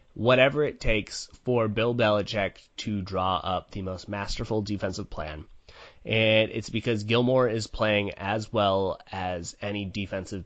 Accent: American